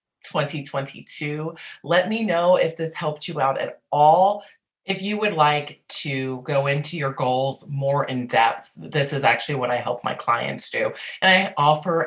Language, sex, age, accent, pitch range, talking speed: English, female, 30-49, American, 130-185 Hz, 175 wpm